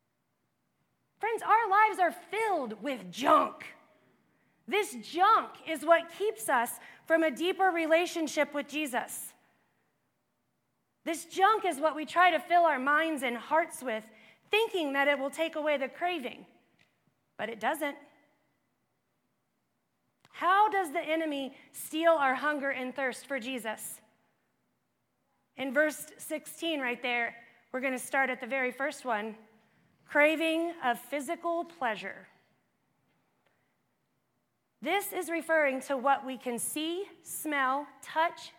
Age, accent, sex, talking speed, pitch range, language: 30-49, American, female, 130 wpm, 255-335 Hz, English